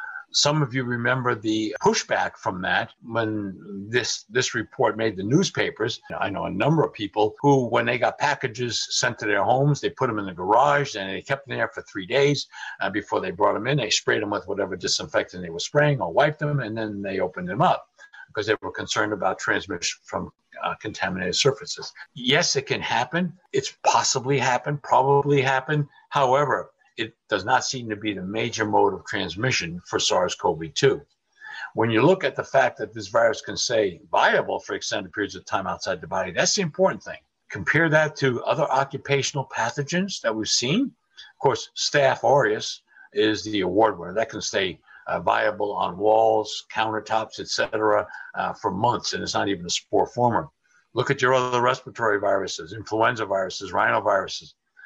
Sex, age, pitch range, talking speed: male, 60-79, 110-150 Hz, 185 wpm